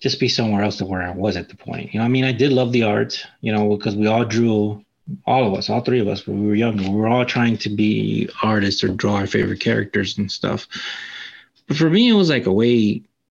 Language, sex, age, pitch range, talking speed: English, male, 30-49, 100-125 Hz, 265 wpm